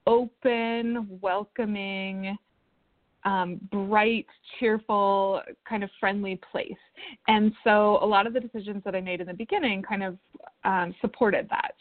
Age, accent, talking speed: 20-39, American, 135 wpm